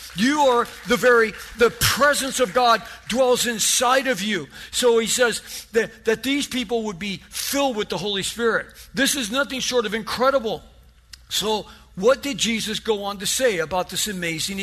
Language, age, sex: English, 50-69, male